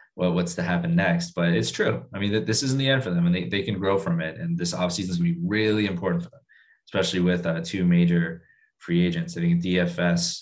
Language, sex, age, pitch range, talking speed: English, male, 20-39, 90-135 Hz, 270 wpm